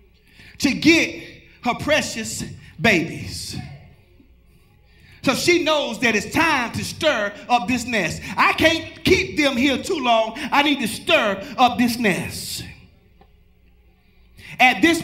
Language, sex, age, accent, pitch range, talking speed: English, male, 30-49, American, 250-315 Hz, 130 wpm